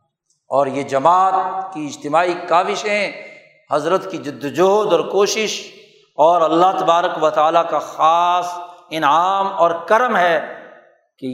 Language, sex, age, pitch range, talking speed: Urdu, male, 60-79, 175-210 Hz, 130 wpm